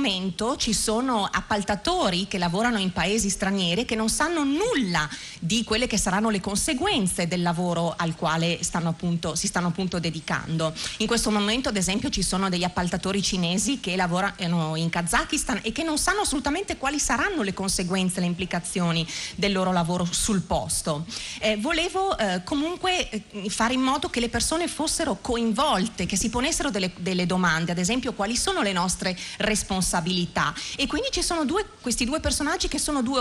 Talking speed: 175 wpm